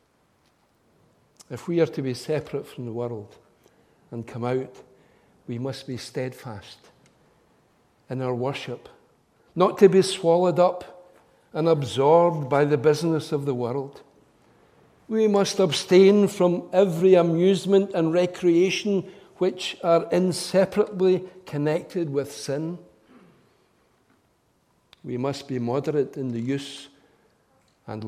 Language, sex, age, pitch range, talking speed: English, male, 60-79, 125-175 Hz, 115 wpm